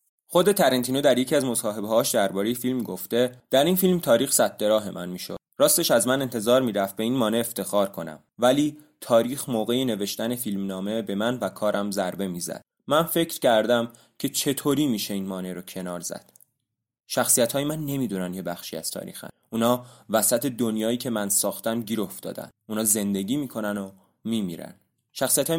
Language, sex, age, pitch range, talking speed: English, male, 20-39, 100-130 Hz, 185 wpm